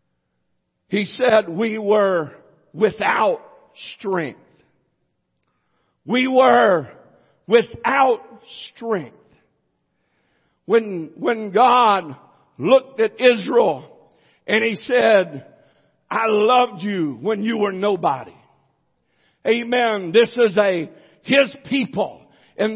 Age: 50-69